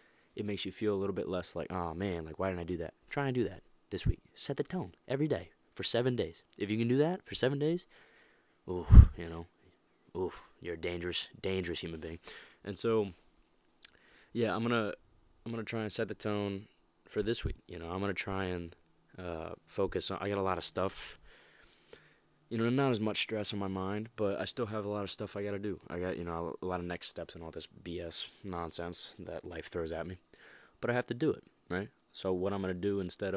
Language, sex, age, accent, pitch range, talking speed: English, male, 20-39, American, 90-110 Hz, 240 wpm